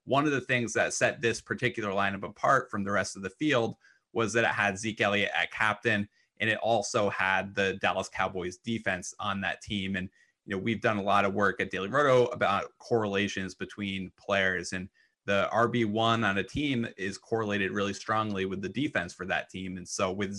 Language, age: English, 30-49